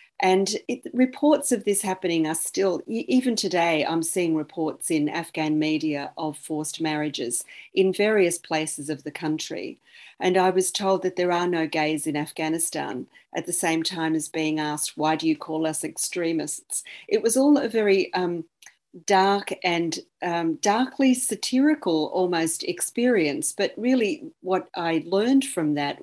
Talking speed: 160 wpm